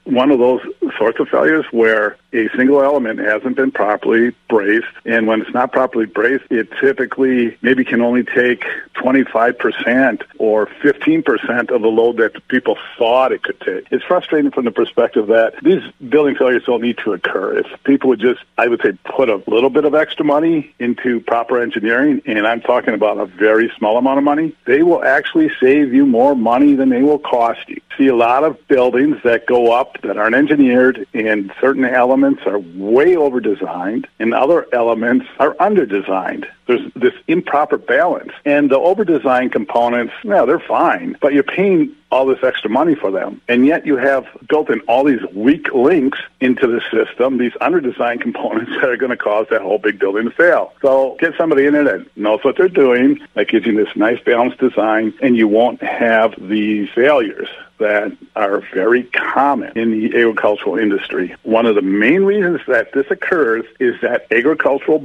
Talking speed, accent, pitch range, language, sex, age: 185 wpm, American, 115-170 Hz, English, male, 50-69